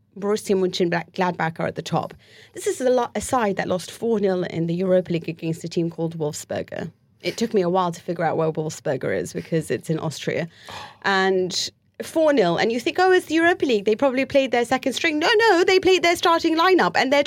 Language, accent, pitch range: English, British, 180-235 Hz